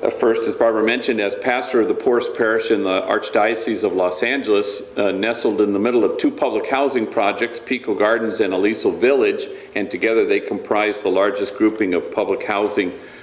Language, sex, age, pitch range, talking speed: English, male, 50-69, 100-165 Hz, 185 wpm